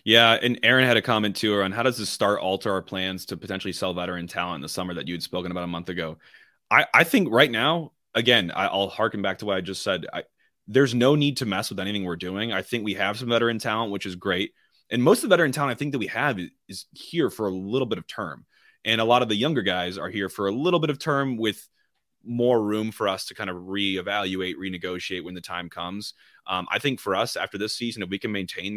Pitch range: 90-115 Hz